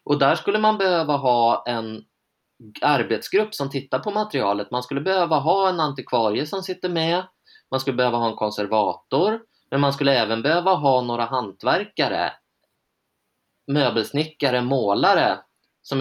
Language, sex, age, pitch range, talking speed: Swedish, male, 20-39, 105-145 Hz, 140 wpm